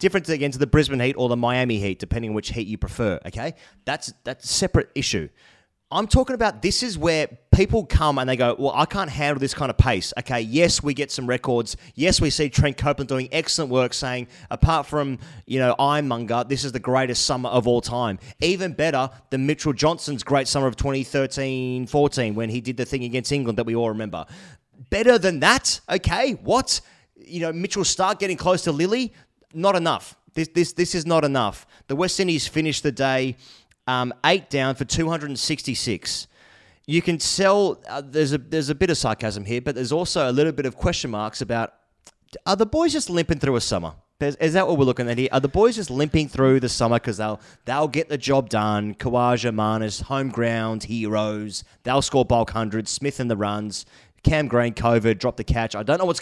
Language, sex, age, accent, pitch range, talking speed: English, male, 30-49, Australian, 120-155 Hz, 210 wpm